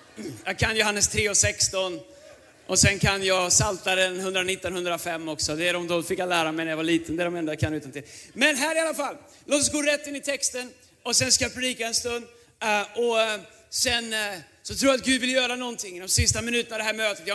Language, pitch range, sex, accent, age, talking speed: Swedish, 225-280 Hz, male, native, 30-49, 255 wpm